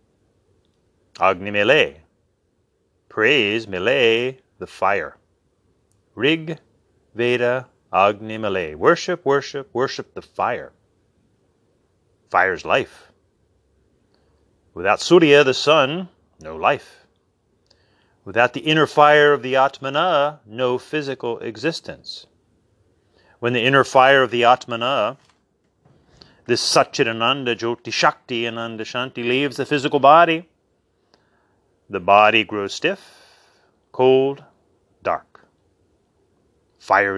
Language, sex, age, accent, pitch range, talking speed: English, male, 30-49, American, 110-145 Hz, 90 wpm